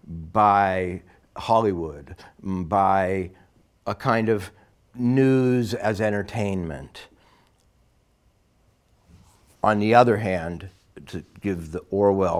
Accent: American